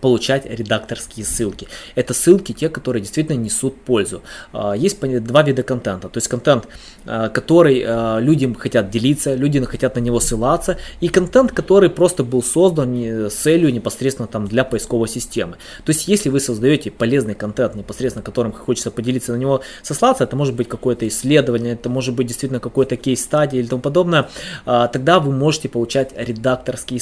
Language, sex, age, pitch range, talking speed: Russian, male, 20-39, 120-150 Hz, 160 wpm